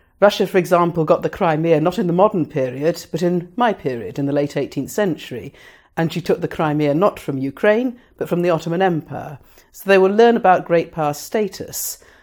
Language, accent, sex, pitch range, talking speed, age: English, British, female, 150-195 Hz, 200 wpm, 50-69